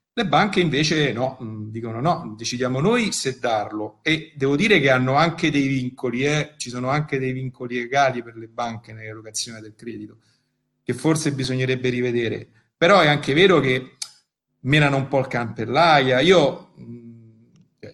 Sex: male